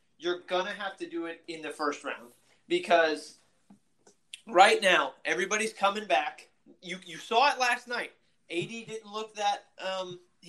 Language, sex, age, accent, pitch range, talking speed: English, male, 30-49, American, 160-205 Hz, 160 wpm